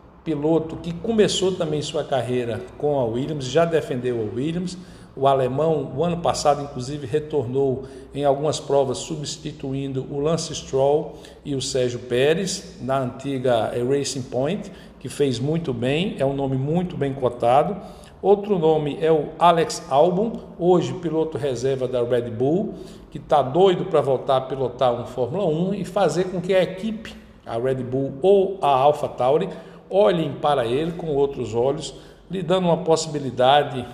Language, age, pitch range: Portuguese, 60-79, 130-180 Hz